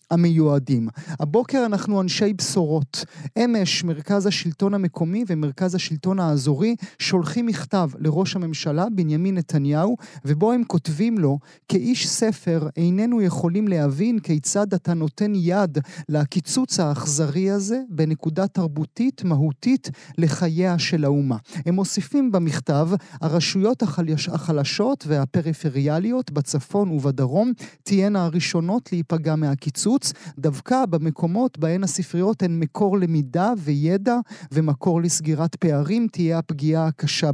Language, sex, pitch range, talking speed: Hebrew, male, 155-200 Hz, 105 wpm